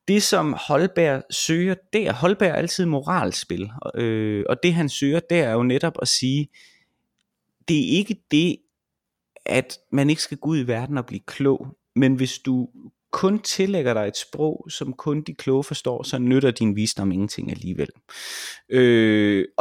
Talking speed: 175 wpm